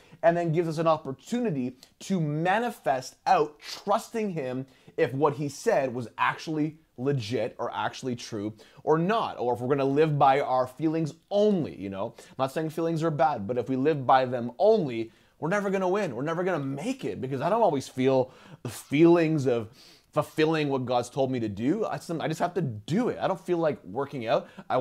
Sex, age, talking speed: male, 20-39, 205 wpm